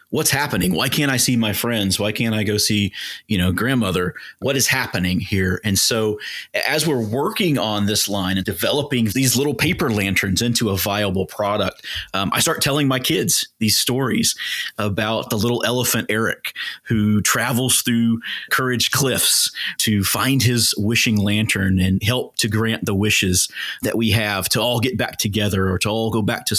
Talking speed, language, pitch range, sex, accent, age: 185 wpm, English, 100-120 Hz, male, American, 30-49